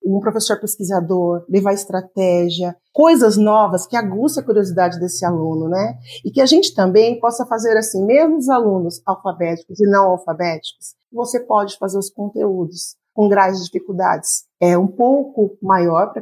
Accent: Brazilian